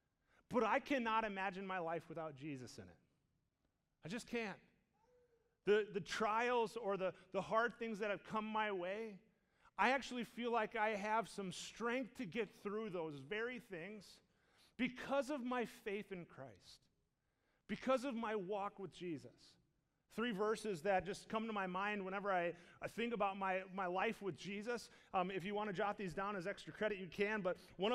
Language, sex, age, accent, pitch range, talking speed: English, male, 30-49, American, 195-240 Hz, 185 wpm